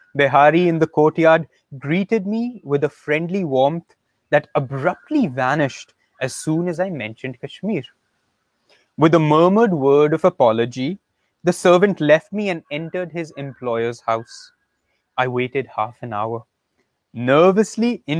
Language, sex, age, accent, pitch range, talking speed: English, male, 20-39, Indian, 135-180 Hz, 130 wpm